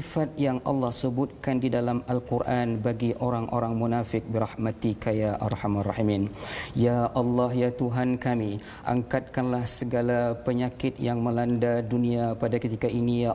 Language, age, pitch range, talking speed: Malayalam, 40-59, 115-125 Hz, 125 wpm